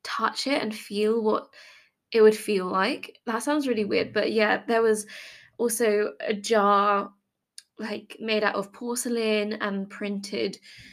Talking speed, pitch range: 150 wpm, 200-230 Hz